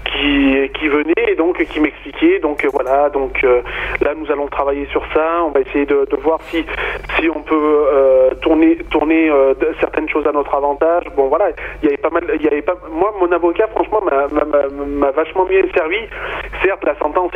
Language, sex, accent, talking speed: French, male, French, 210 wpm